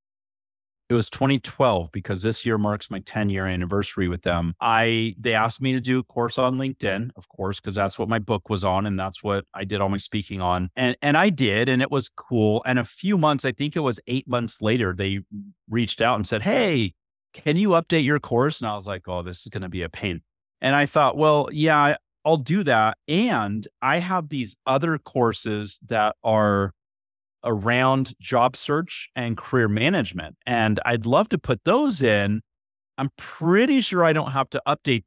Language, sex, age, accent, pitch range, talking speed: English, male, 40-59, American, 100-135 Hz, 205 wpm